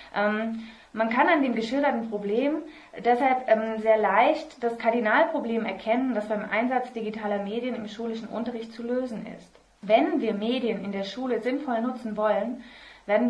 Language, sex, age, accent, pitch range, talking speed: German, female, 20-39, German, 195-235 Hz, 150 wpm